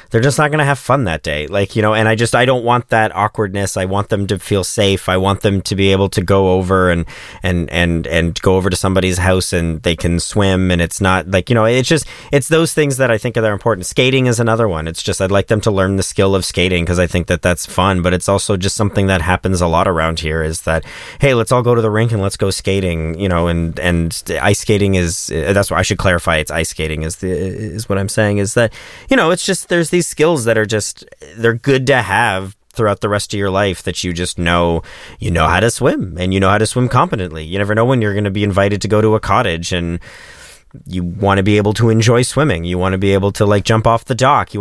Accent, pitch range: American, 90-110 Hz